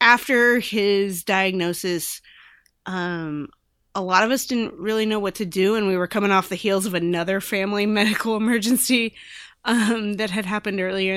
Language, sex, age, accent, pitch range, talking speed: English, female, 20-39, American, 170-205 Hz, 165 wpm